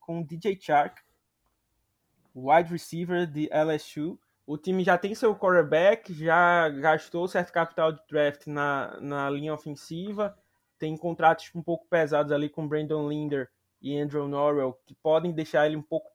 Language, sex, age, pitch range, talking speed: Portuguese, male, 20-39, 145-175 Hz, 155 wpm